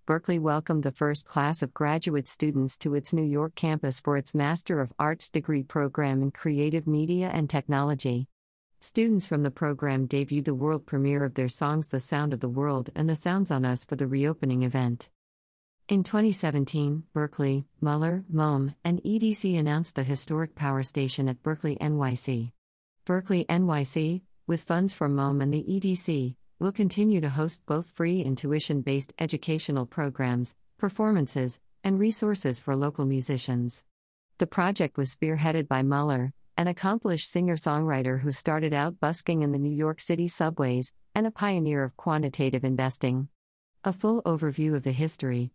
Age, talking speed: 50-69, 160 wpm